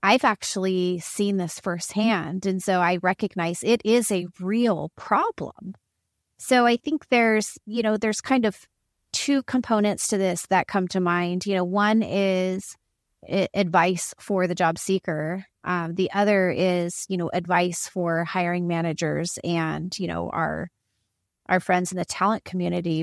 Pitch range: 175-210 Hz